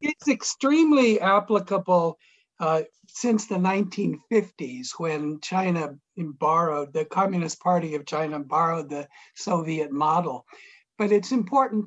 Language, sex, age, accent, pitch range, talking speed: English, male, 60-79, American, 175-220 Hz, 110 wpm